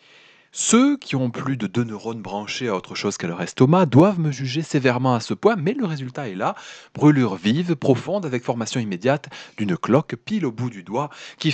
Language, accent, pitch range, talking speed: French, French, 120-185 Hz, 210 wpm